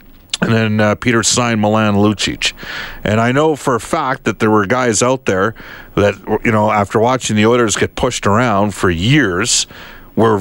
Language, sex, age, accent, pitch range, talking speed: English, male, 50-69, American, 100-130 Hz, 185 wpm